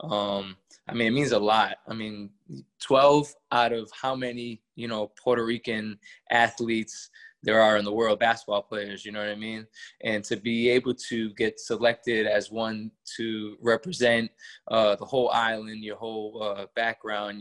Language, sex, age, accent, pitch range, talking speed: English, male, 20-39, American, 105-115 Hz, 170 wpm